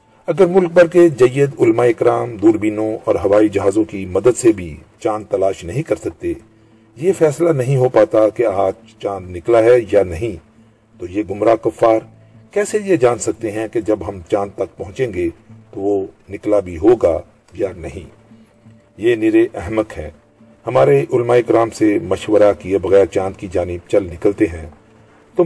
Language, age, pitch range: Urdu, 50-69, 100-140 Hz